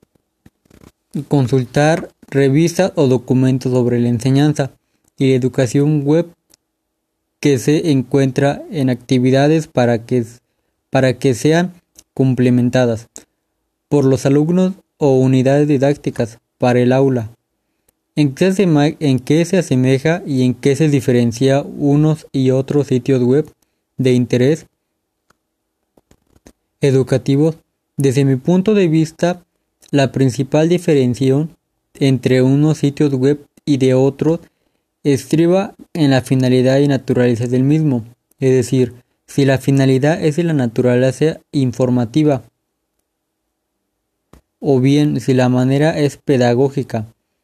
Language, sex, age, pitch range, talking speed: Spanish, male, 20-39, 125-150 Hz, 115 wpm